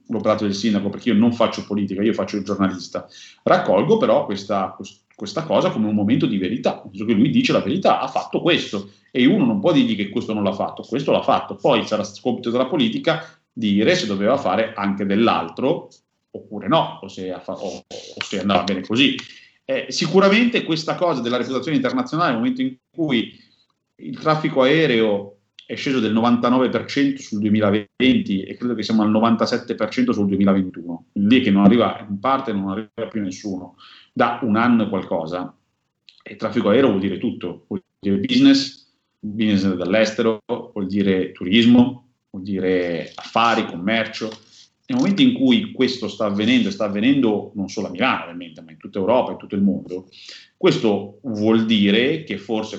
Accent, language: native, Italian